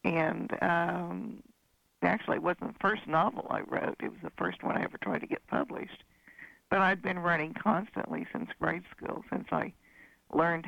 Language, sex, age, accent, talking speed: English, female, 60-79, American, 180 wpm